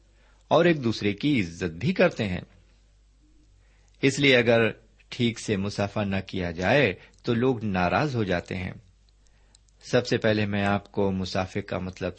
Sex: male